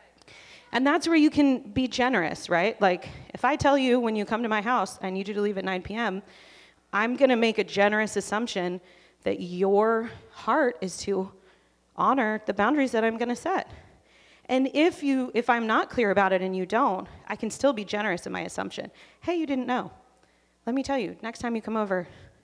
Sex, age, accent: female, 30-49, American